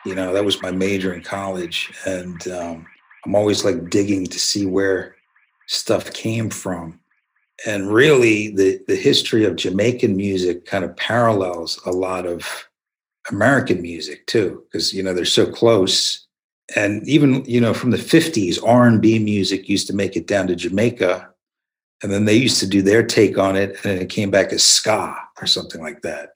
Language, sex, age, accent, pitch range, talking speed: English, male, 50-69, American, 95-120 Hz, 180 wpm